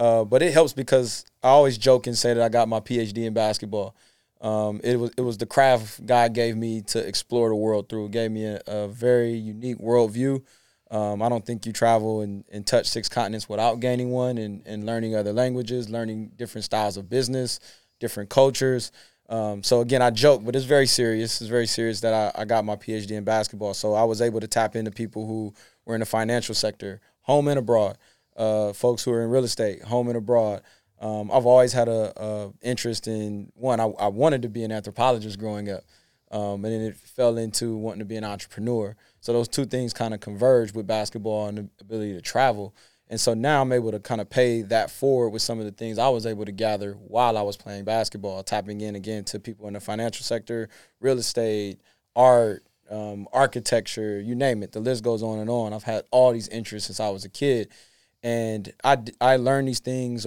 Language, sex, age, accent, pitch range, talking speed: English, male, 20-39, American, 105-120 Hz, 220 wpm